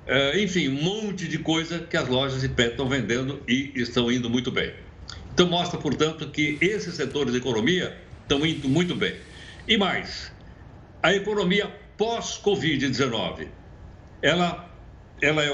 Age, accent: 60-79, Brazilian